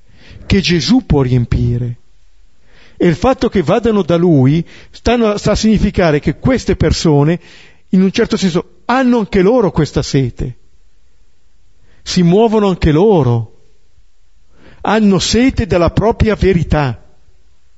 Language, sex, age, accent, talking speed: Italian, male, 50-69, native, 120 wpm